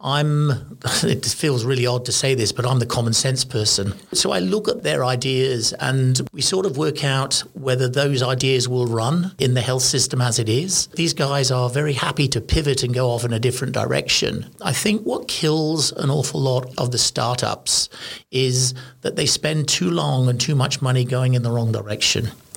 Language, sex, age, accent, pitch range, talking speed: English, male, 50-69, British, 120-145 Hz, 205 wpm